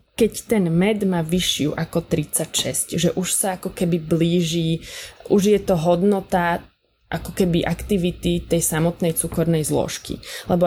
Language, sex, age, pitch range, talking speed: Slovak, female, 20-39, 170-205 Hz, 140 wpm